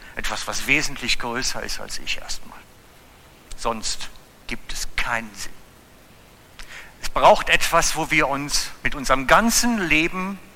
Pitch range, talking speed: 135-200 Hz, 130 wpm